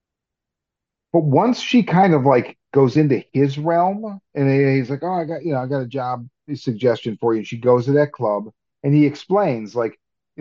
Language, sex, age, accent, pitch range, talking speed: English, male, 40-59, American, 120-160 Hz, 200 wpm